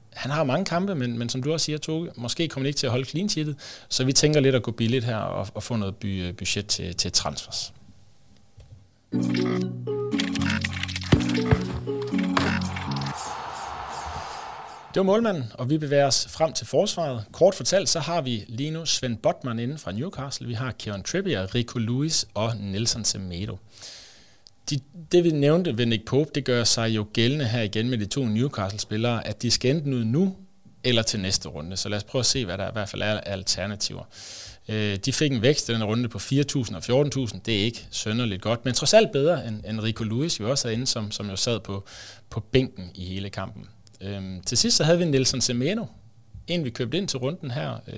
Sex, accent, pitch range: male, native, 105-140 Hz